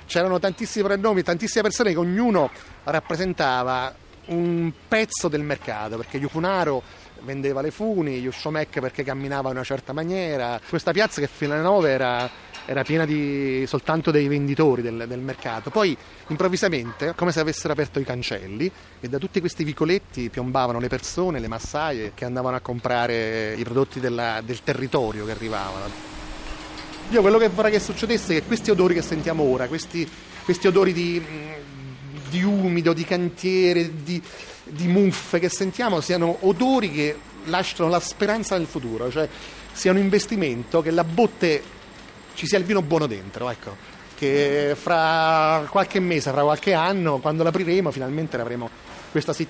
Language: Italian